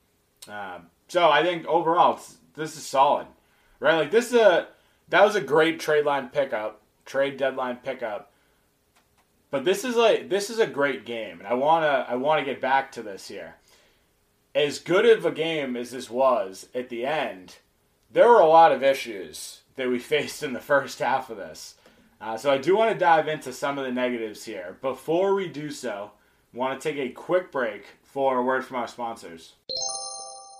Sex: male